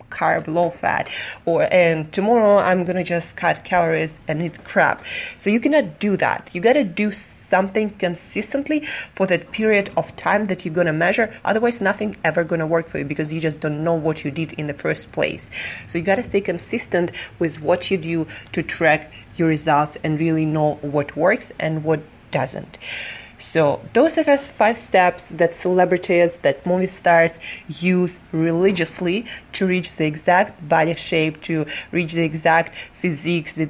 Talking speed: 175 wpm